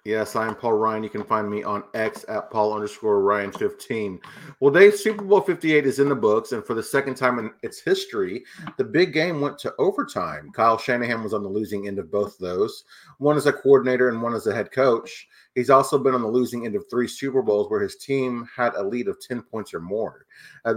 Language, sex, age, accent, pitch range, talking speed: English, male, 30-49, American, 110-145 Hz, 235 wpm